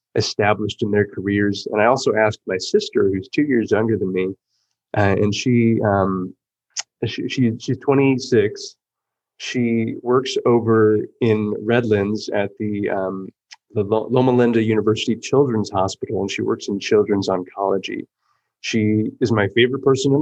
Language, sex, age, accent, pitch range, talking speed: English, male, 30-49, American, 105-135 Hz, 150 wpm